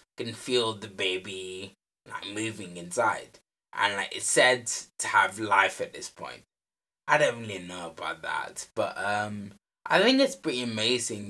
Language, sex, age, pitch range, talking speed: English, male, 10-29, 105-135 Hz, 160 wpm